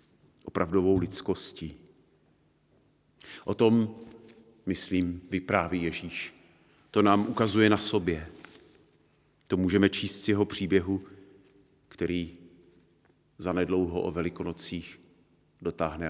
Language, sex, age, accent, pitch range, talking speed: Czech, male, 50-69, native, 90-105 Hz, 85 wpm